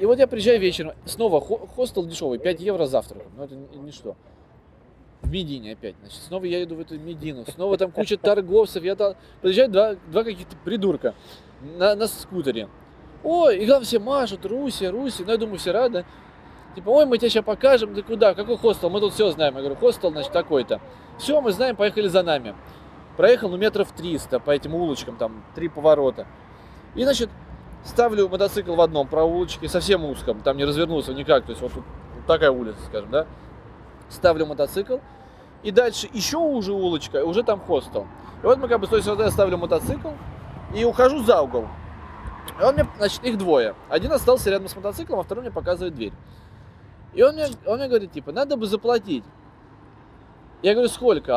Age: 20-39